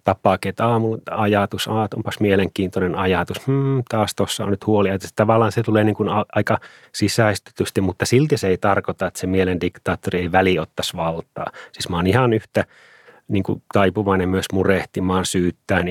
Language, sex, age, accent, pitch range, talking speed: Finnish, male, 30-49, native, 90-100 Hz, 170 wpm